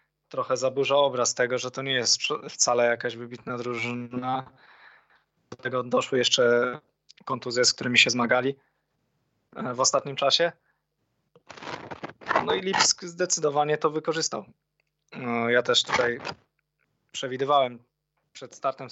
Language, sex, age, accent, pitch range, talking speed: Polish, male, 20-39, native, 120-145 Hz, 115 wpm